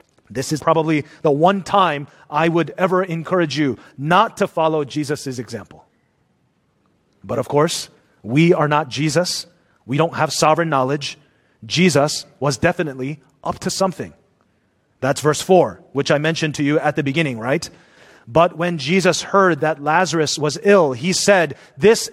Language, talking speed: English, 155 wpm